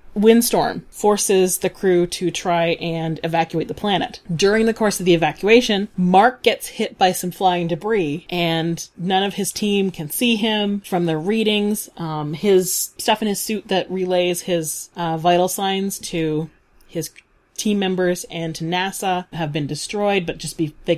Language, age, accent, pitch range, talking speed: English, 30-49, American, 165-210 Hz, 170 wpm